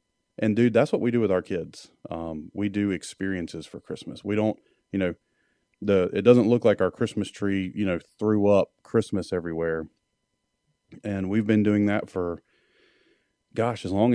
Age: 30-49